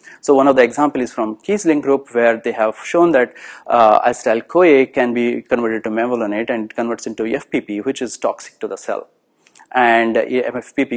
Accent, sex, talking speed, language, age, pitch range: Indian, male, 190 wpm, English, 30-49, 110-135 Hz